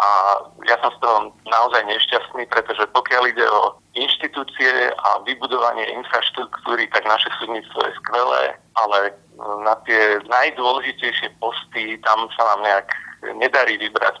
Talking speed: 130 wpm